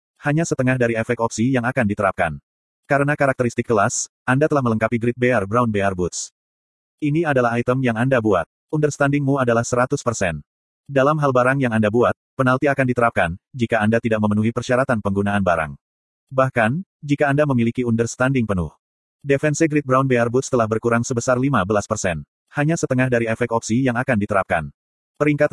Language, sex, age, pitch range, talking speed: Indonesian, male, 30-49, 110-135 Hz, 160 wpm